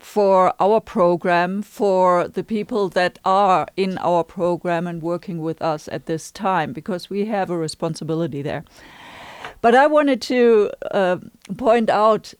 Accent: German